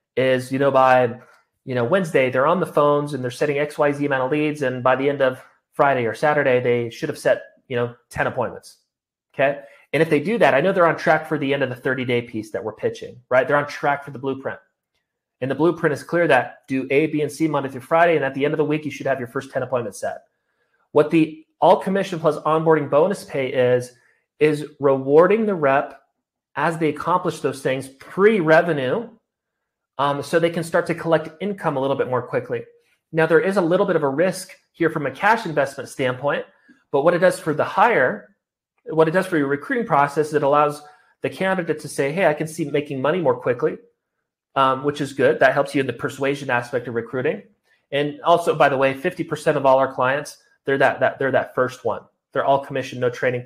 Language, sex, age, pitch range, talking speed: English, male, 30-49, 135-165 Hz, 230 wpm